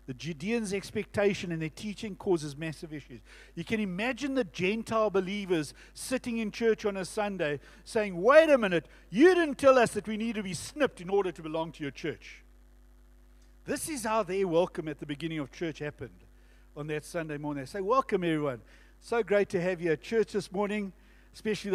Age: 60-79